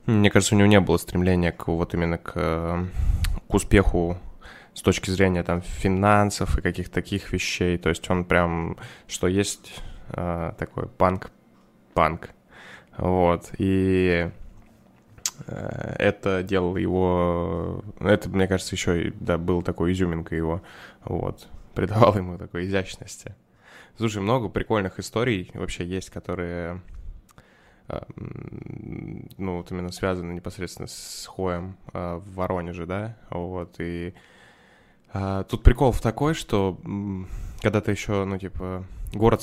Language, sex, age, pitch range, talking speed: Russian, male, 10-29, 90-100 Hz, 120 wpm